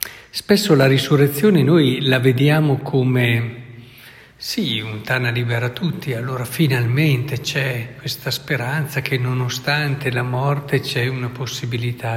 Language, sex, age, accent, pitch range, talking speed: Italian, male, 60-79, native, 125-165 Hz, 120 wpm